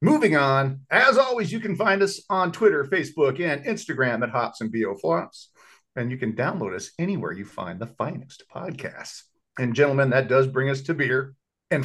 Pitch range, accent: 130-185 Hz, American